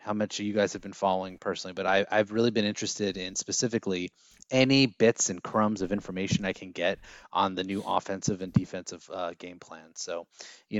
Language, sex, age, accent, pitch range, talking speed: English, male, 20-39, American, 95-110 Hz, 195 wpm